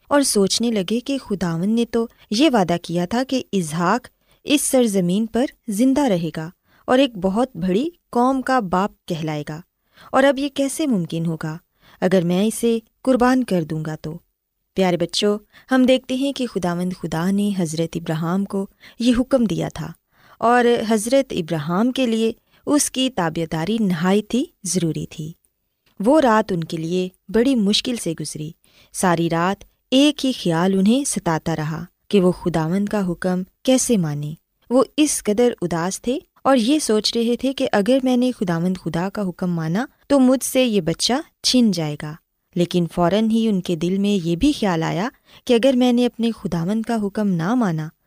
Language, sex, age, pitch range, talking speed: Urdu, female, 20-39, 175-245 Hz, 175 wpm